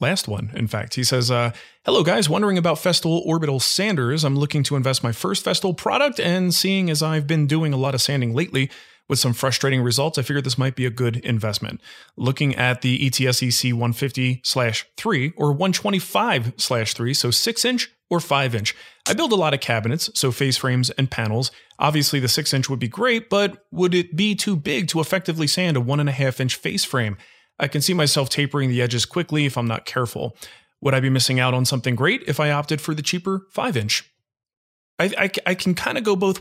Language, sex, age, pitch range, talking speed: English, male, 30-49, 120-155 Hz, 220 wpm